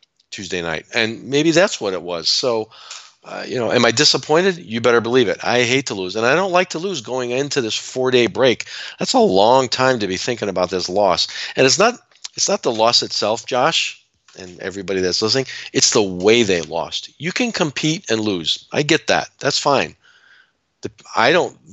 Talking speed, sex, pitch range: 205 wpm, male, 90-120 Hz